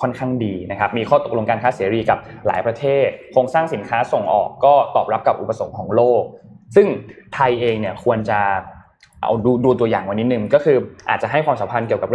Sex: male